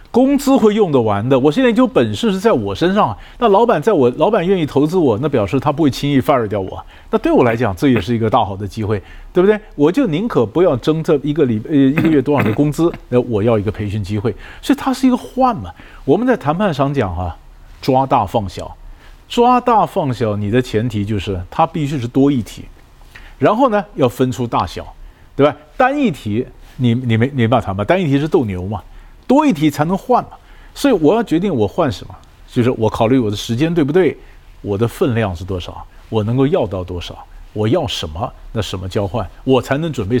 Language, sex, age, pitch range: Chinese, male, 50-69, 110-165 Hz